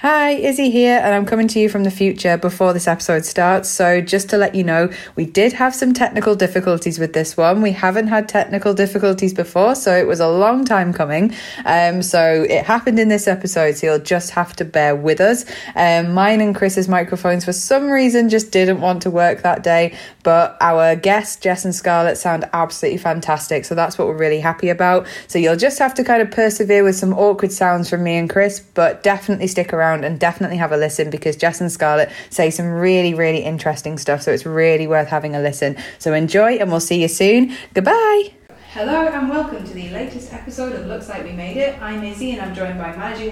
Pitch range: 170-215 Hz